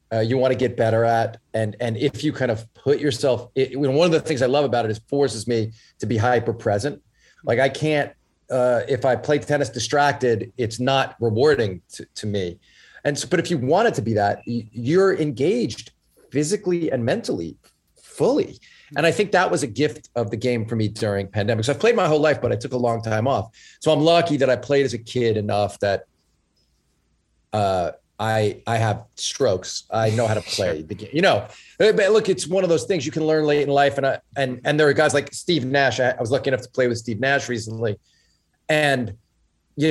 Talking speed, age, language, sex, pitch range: 220 wpm, 40-59, English, male, 110-140 Hz